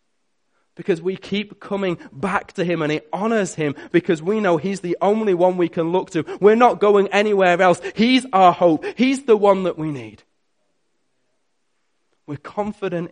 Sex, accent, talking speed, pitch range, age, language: male, British, 175 wpm, 150-200 Hz, 20-39, English